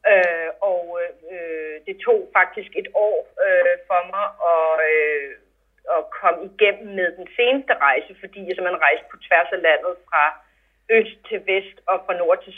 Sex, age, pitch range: female, 30-49, 175-260 Hz